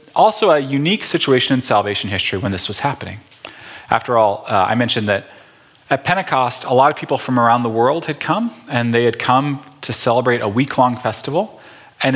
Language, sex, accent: English, male, American